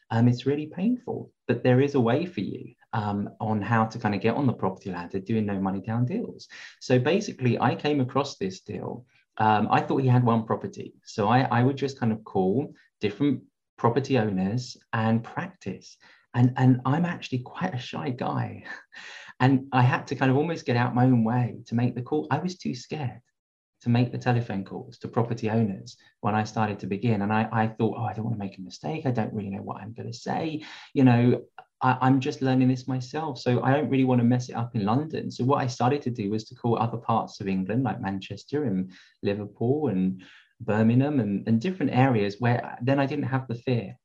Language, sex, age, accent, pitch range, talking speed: English, male, 20-39, British, 110-130 Hz, 220 wpm